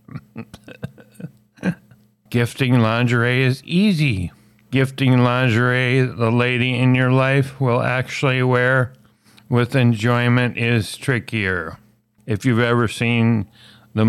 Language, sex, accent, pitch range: English, male, American, 105-130 Hz